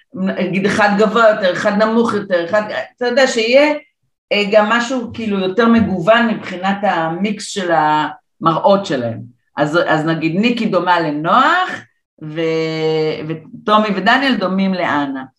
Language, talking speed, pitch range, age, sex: Hebrew, 125 wpm, 165-225 Hz, 40-59, female